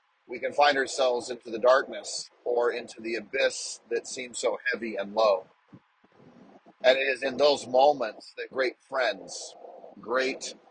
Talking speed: 150 wpm